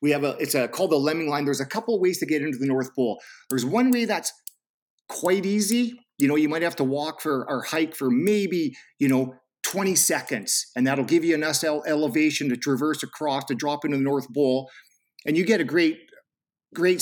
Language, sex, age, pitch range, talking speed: English, male, 40-59, 130-160 Hz, 220 wpm